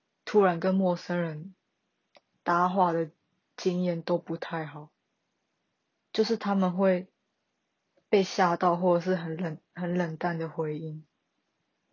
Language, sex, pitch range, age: Chinese, female, 170-190 Hz, 20-39